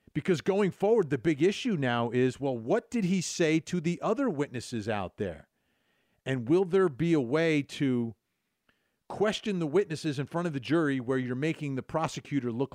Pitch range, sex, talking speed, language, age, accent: 110-145 Hz, male, 190 wpm, English, 50-69, American